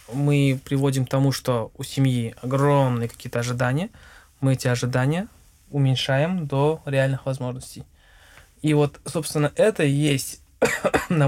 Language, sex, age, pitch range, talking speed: Russian, male, 20-39, 125-150 Hz, 130 wpm